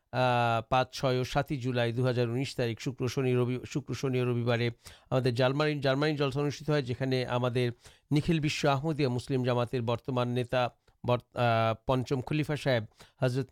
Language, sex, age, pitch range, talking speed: Urdu, male, 50-69, 125-145 Hz, 120 wpm